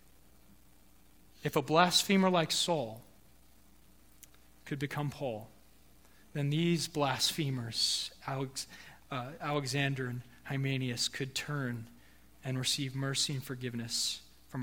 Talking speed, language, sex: 95 wpm, English, male